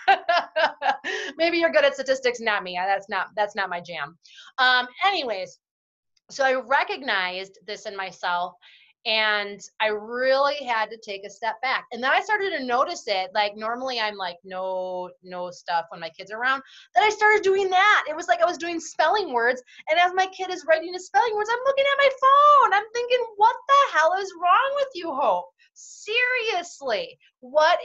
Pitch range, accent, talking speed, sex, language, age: 210-330 Hz, American, 190 wpm, female, English, 30-49